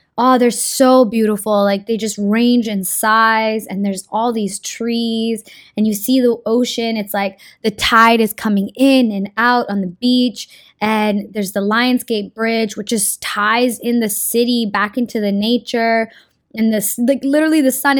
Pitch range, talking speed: 205-255 Hz, 175 wpm